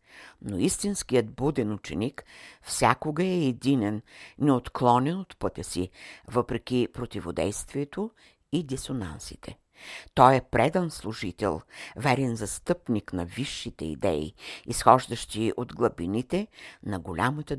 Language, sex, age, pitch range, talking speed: Bulgarian, female, 60-79, 105-140 Hz, 100 wpm